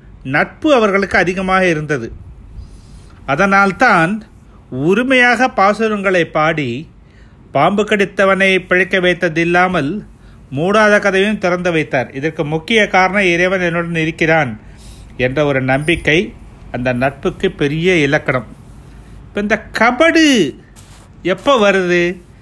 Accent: native